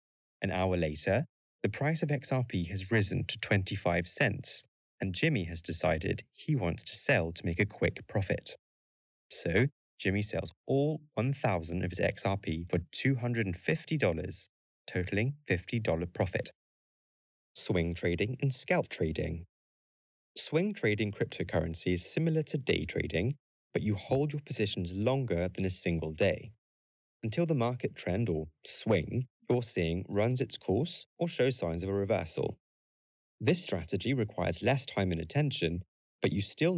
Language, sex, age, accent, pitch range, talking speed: English, male, 20-39, British, 85-130 Hz, 145 wpm